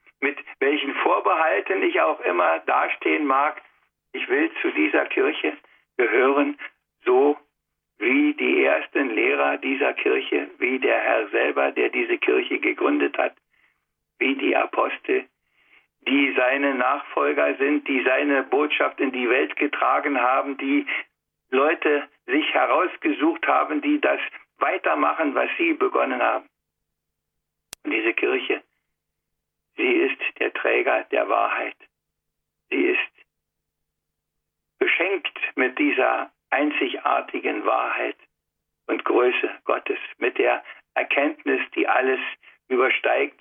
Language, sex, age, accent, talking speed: German, male, 60-79, German, 110 wpm